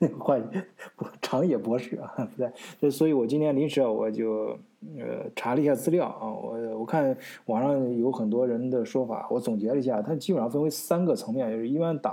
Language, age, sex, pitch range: Chinese, 20-39, male, 115-160 Hz